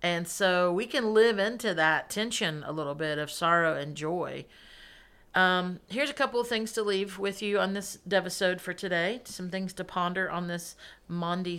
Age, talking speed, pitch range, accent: 50-69, 190 wpm, 160-200 Hz, American